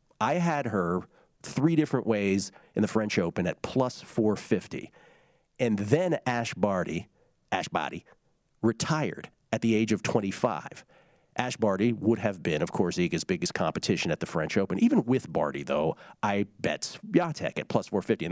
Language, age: English, 40-59